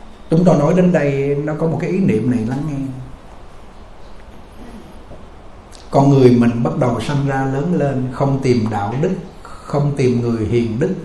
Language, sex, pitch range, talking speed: Vietnamese, male, 125-175 Hz, 175 wpm